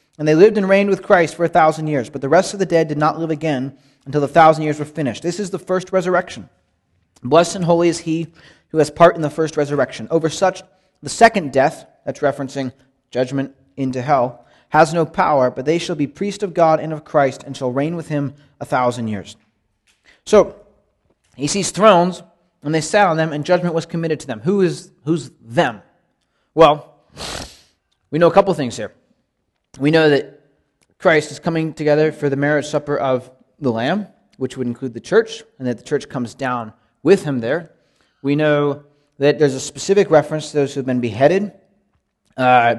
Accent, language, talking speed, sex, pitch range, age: American, English, 200 wpm, male, 125-165 Hz, 30-49